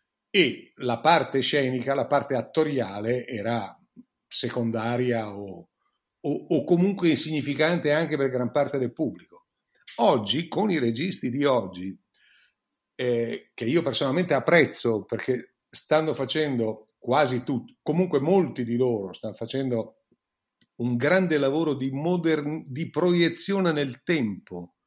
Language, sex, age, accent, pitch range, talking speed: Italian, male, 50-69, native, 120-150 Hz, 125 wpm